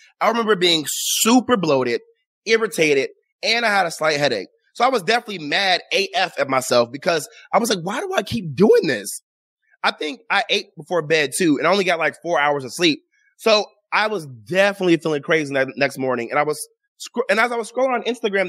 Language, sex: English, male